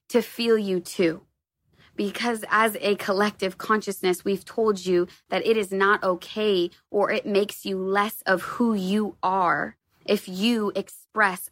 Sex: female